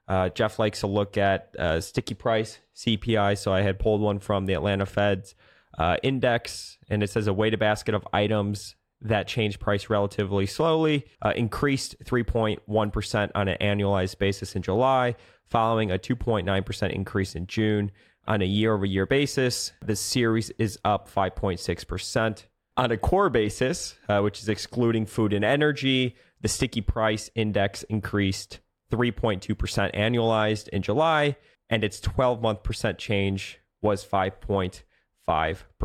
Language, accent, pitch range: English, American, 100-115 Hz